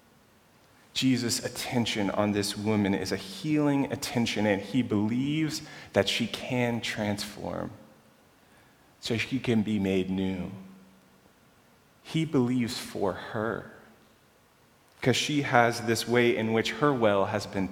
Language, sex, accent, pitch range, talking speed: English, male, American, 95-115 Hz, 125 wpm